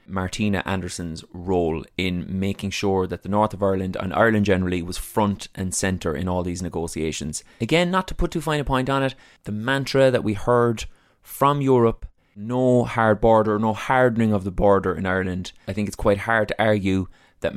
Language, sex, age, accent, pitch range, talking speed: English, male, 20-39, Irish, 95-125 Hz, 195 wpm